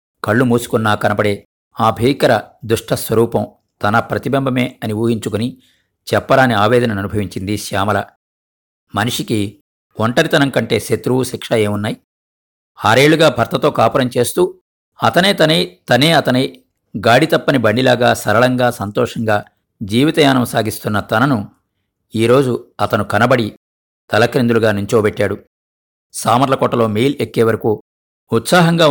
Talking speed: 90 wpm